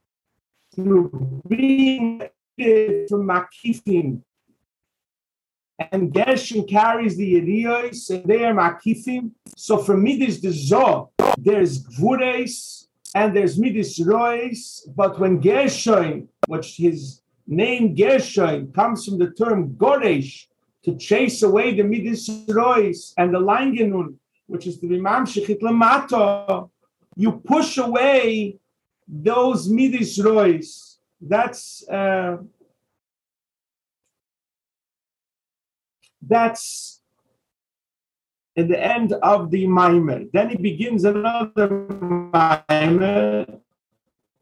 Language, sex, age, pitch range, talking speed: English, male, 50-69, 180-230 Hz, 95 wpm